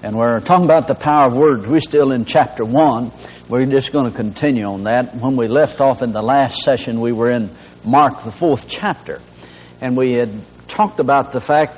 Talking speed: 215 wpm